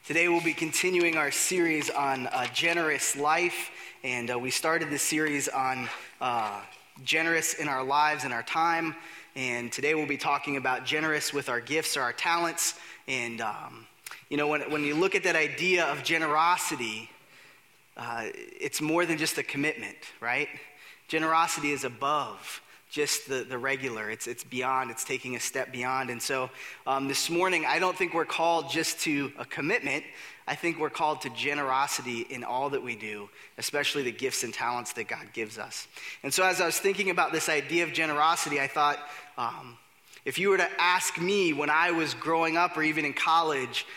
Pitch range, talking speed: 140-170 Hz, 185 wpm